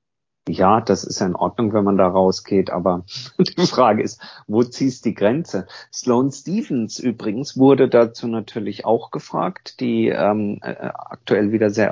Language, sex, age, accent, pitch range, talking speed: German, male, 50-69, German, 105-125 Hz, 150 wpm